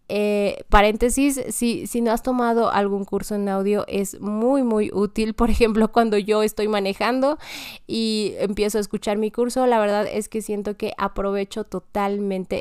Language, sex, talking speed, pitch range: Spanish, female, 165 wpm, 200-235 Hz